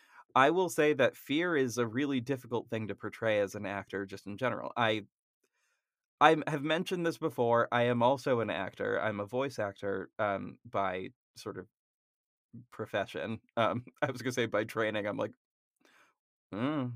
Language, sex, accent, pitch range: English, male, American, 105-125 Hz